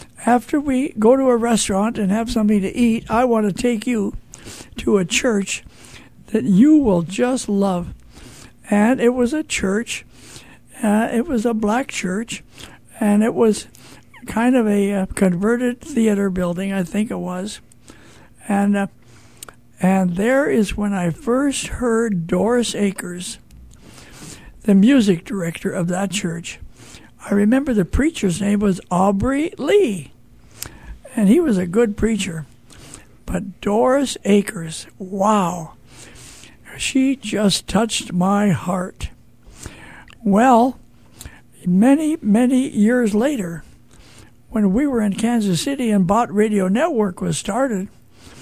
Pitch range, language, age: 190-235 Hz, English, 60-79